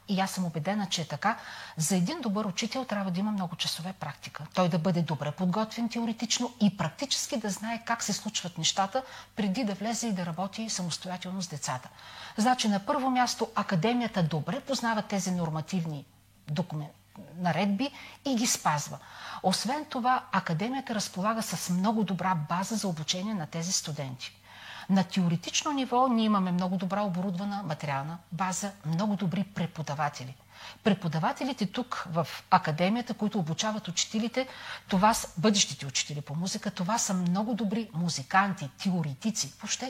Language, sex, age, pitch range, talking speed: Bulgarian, female, 40-59, 165-220 Hz, 150 wpm